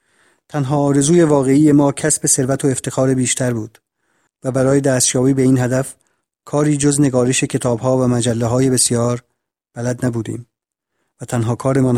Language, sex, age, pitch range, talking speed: Persian, male, 40-59, 125-150 Hz, 145 wpm